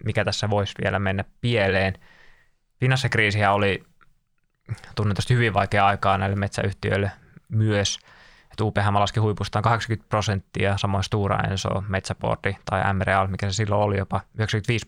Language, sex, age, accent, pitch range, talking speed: Finnish, male, 20-39, native, 100-115 Hz, 135 wpm